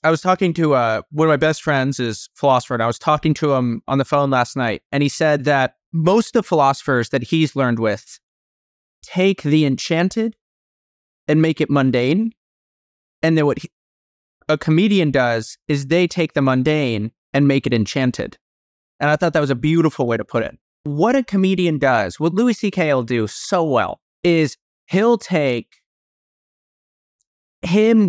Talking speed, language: 180 wpm, English